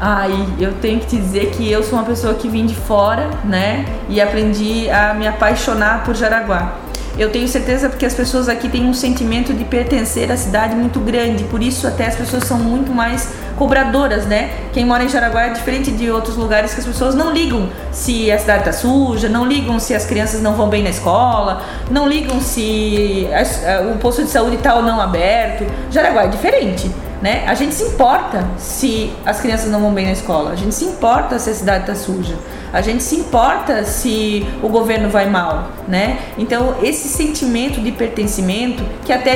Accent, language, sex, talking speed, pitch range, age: Brazilian, Portuguese, female, 200 wpm, 205-240 Hz, 20-39